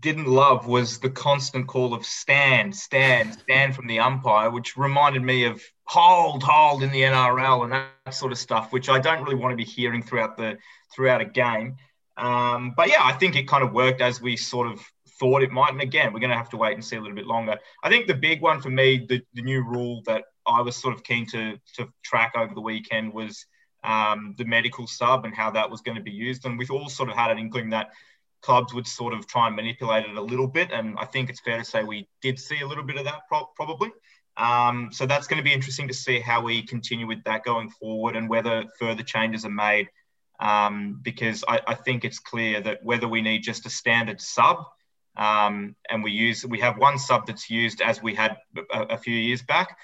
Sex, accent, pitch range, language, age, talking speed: male, Australian, 110-130 Hz, English, 20-39, 240 wpm